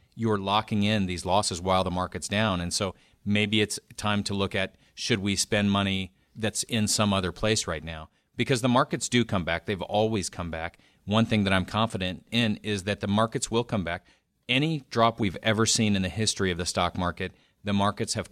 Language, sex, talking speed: English, male, 215 wpm